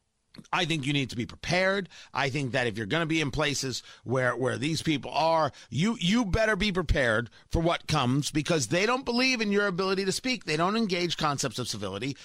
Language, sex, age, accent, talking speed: English, male, 50-69, American, 220 wpm